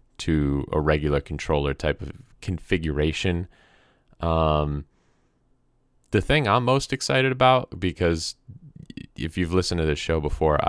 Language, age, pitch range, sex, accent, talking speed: English, 20-39, 75-115 Hz, male, American, 125 wpm